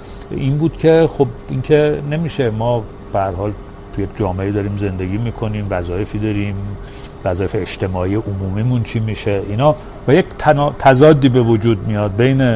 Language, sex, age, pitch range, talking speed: Persian, male, 50-69, 100-140 Hz, 145 wpm